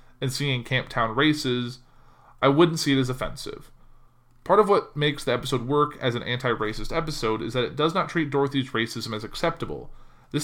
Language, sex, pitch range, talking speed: English, male, 115-145 Hz, 190 wpm